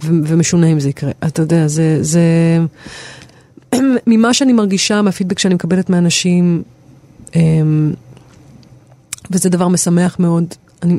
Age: 30-49